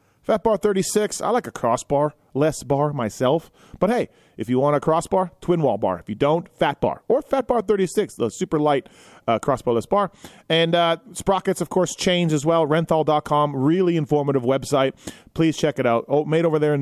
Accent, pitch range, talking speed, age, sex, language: American, 130-170 Hz, 195 wpm, 30-49, male, English